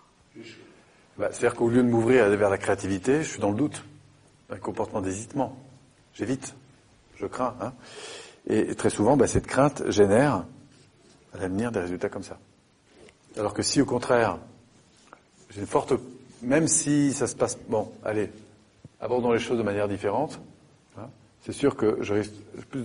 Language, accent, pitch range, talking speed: French, French, 105-130 Hz, 160 wpm